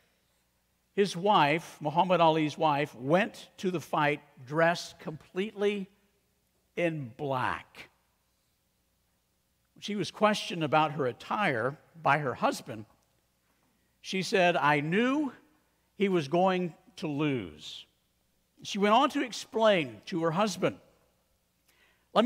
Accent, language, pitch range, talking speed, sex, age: American, English, 135-190 Hz, 110 wpm, male, 50-69